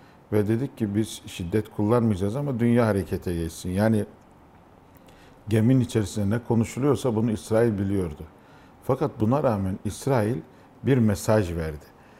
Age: 50-69